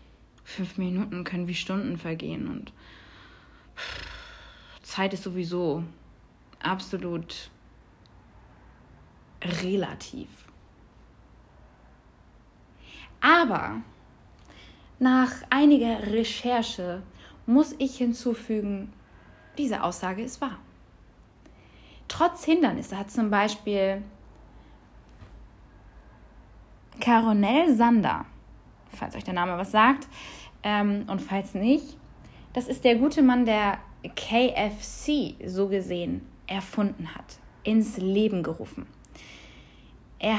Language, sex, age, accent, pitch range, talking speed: German, female, 20-39, German, 180-245 Hz, 80 wpm